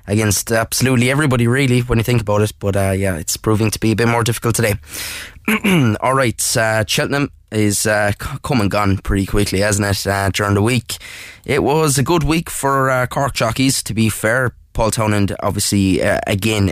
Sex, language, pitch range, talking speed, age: male, English, 100-115 Hz, 190 wpm, 10-29